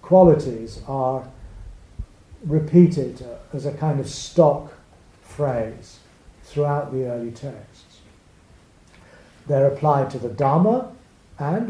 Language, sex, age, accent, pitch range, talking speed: English, male, 50-69, British, 115-165 Hz, 95 wpm